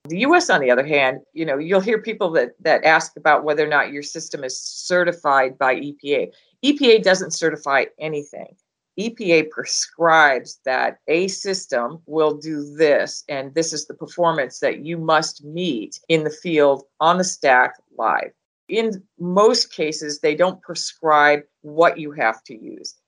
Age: 50-69